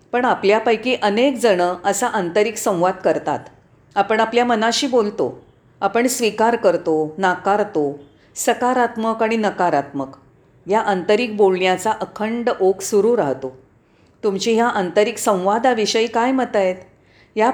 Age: 40-59